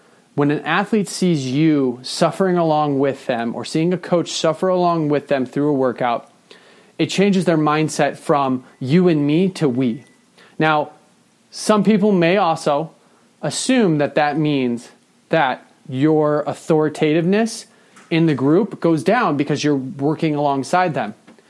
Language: English